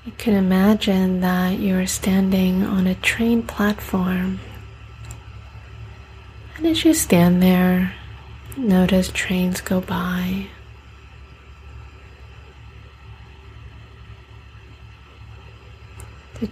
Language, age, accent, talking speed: English, 30-49, American, 75 wpm